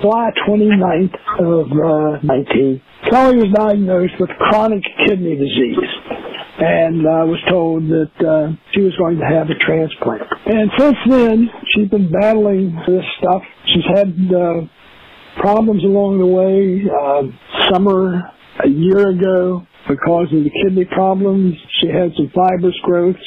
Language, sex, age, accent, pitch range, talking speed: English, male, 60-79, American, 165-195 Hz, 140 wpm